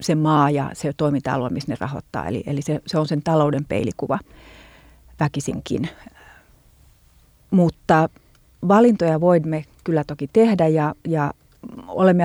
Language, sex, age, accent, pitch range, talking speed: Finnish, female, 30-49, native, 155-180 Hz, 125 wpm